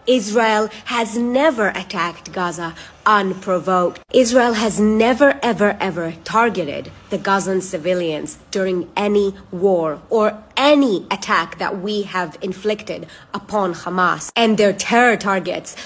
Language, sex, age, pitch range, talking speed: English, female, 30-49, 185-240 Hz, 115 wpm